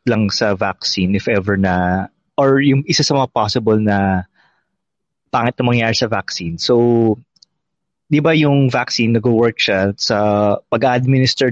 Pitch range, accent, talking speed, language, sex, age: 115-140 Hz, Filipino, 135 wpm, English, male, 20-39